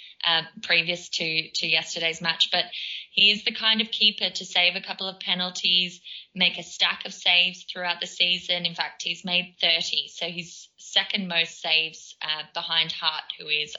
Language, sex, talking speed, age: English, female, 185 wpm, 20-39